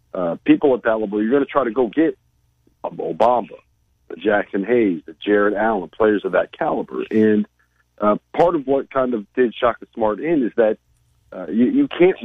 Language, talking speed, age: English, 190 wpm, 40-59